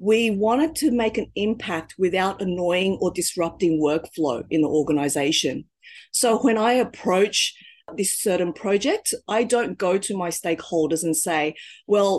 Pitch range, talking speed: 175-230 Hz, 150 wpm